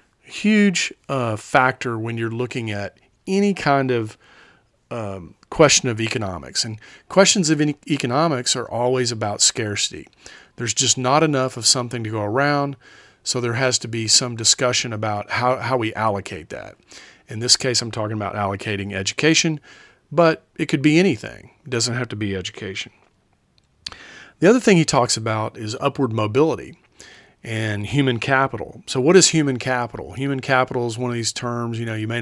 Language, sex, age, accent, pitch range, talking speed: English, male, 40-59, American, 110-135 Hz, 170 wpm